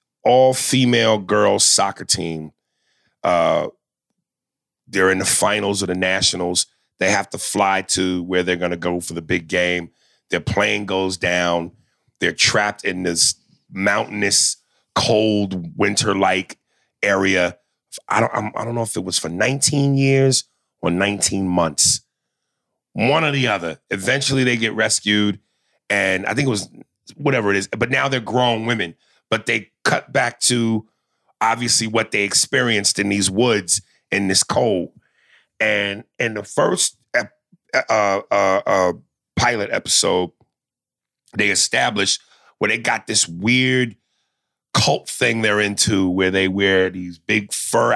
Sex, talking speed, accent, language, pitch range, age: male, 140 wpm, American, English, 95-115 Hz, 30-49